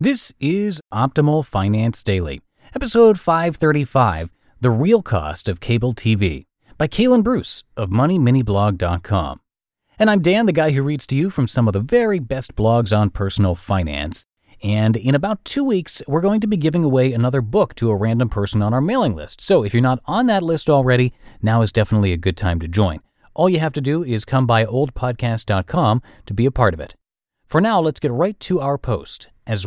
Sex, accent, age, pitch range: male, American, 30-49, 105-155 Hz